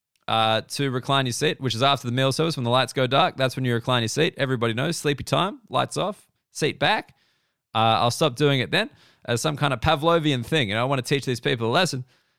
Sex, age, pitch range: male, 20-39, 125-155 Hz